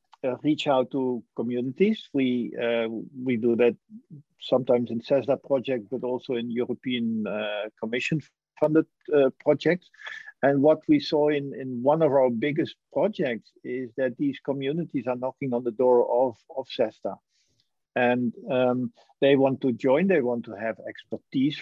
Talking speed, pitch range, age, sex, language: 155 wpm, 125-160 Hz, 50-69, male, English